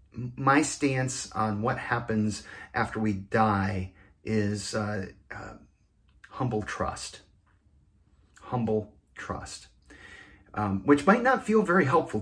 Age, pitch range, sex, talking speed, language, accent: 40-59, 110-175 Hz, male, 110 wpm, English, American